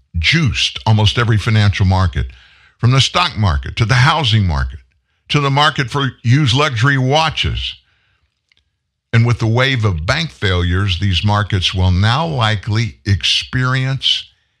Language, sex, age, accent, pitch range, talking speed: English, male, 60-79, American, 90-130 Hz, 135 wpm